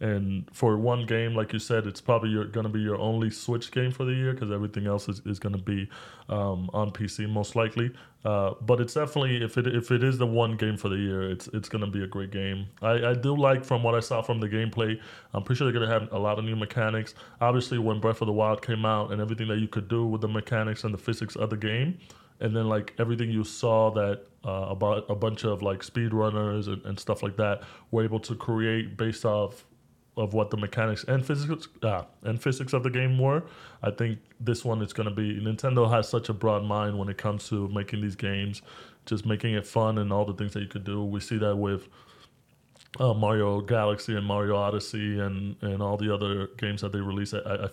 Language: English